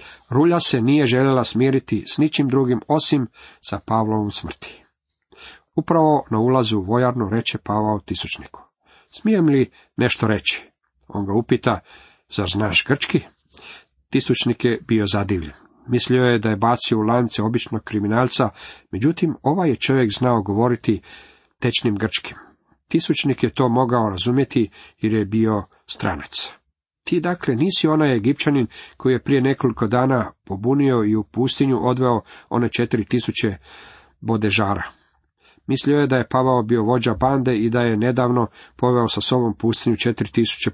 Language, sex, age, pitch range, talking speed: Croatian, male, 50-69, 110-130 Hz, 140 wpm